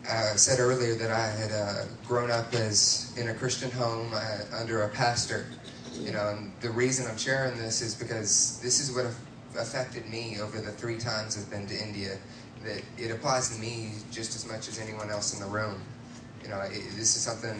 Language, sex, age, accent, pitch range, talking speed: English, male, 30-49, American, 110-120 Hz, 210 wpm